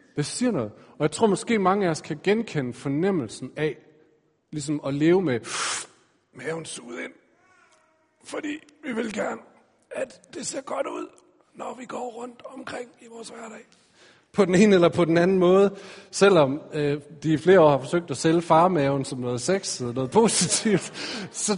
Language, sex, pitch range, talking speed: Danish, male, 130-190 Hz, 170 wpm